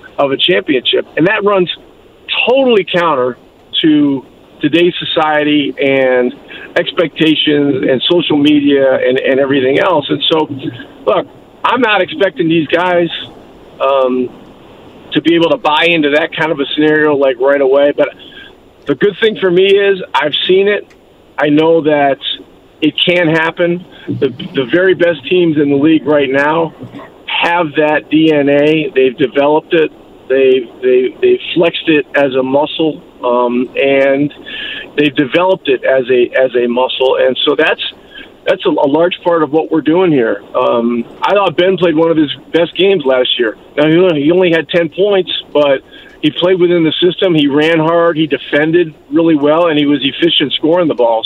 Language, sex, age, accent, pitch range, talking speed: English, male, 50-69, American, 140-175 Hz, 170 wpm